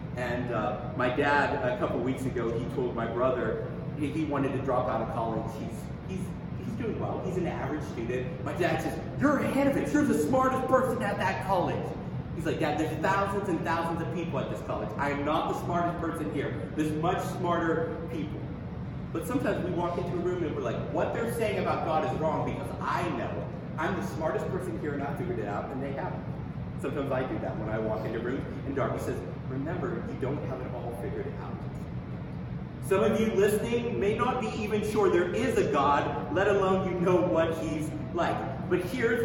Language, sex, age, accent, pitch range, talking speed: English, male, 30-49, American, 140-200 Hz, 215 wpm